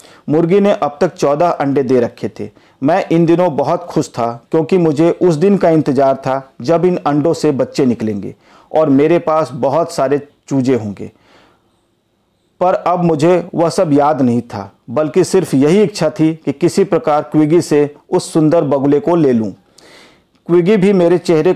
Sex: male